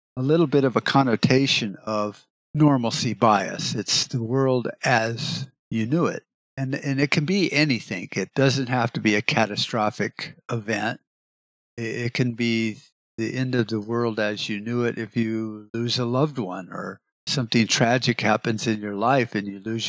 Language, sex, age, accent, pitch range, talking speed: English, male, 50-69, American, 110-135 Hz, 175 wpm